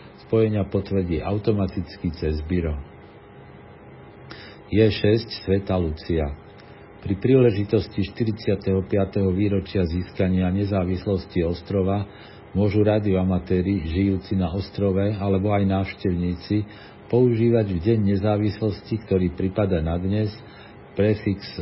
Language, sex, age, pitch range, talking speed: Slovak, male, 50-69, 85-105 Hz, 90 wpm